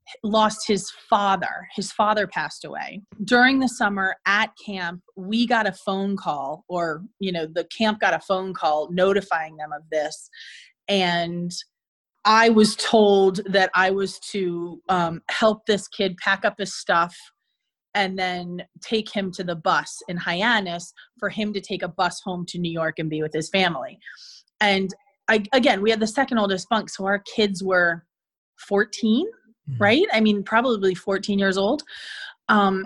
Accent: American